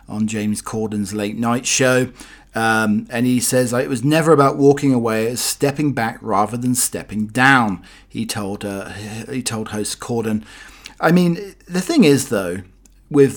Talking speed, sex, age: 170 wpm, male, 40-59